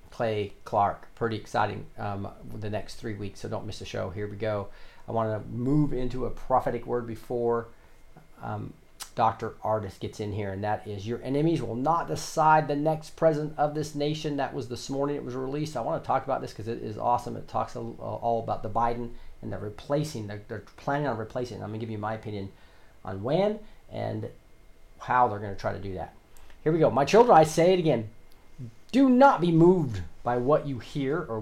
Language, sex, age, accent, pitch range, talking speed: English, male, 40-59, American, 110-155 Hz, 210 wpm